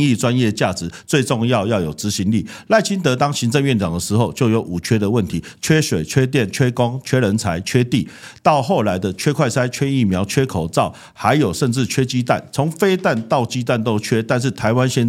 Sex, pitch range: male, 105-135 Hz